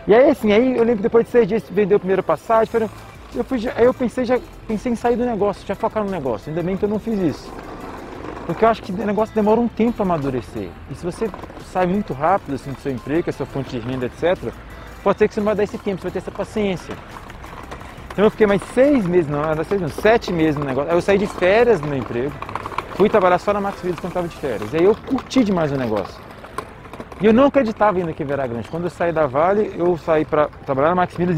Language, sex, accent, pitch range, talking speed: Portuguese, male, Brazilian, 155-215 Hz, 260 wpm